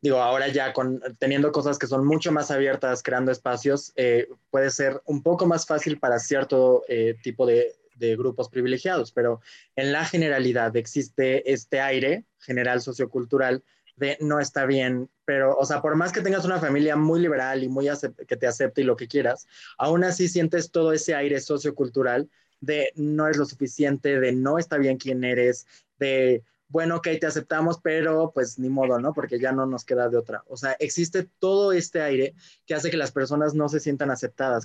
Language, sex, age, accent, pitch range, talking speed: Spanish, male, 20-39, Mexican, 130-155 Hz, 195 wpm